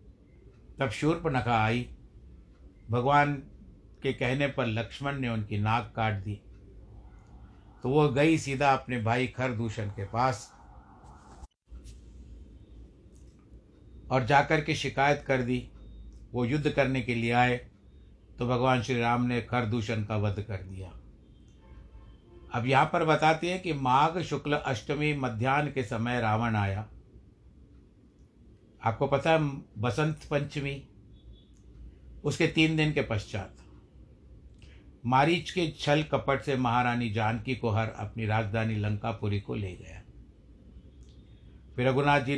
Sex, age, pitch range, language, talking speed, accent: male, 60-79, 110-140 Hz, Hindi, 125 wpm, native